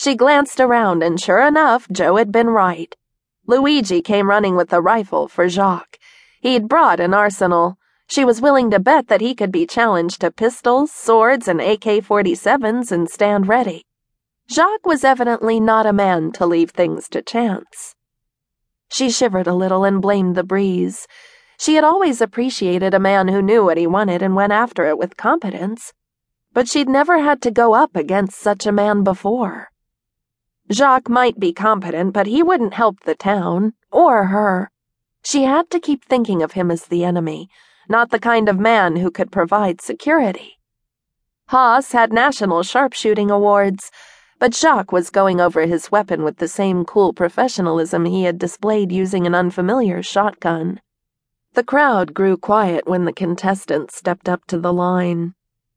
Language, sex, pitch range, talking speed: English, female, 180-240 Hz, 165 wpm